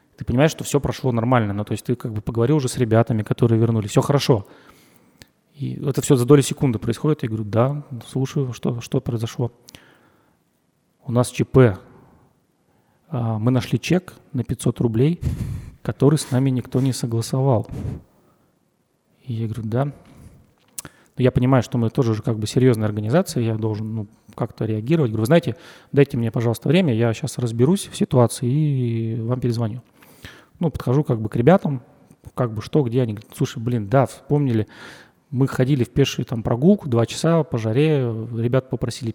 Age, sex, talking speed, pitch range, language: 30-49, male, 170 wpm, 115-140 Hz, Russian